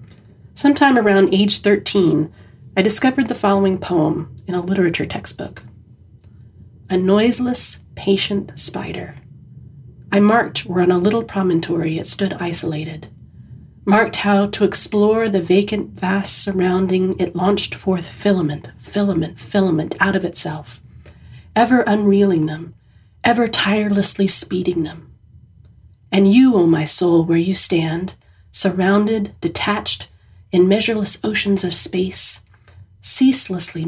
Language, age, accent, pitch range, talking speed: English, 40-59, American, 135-200 Hz, 120 wpm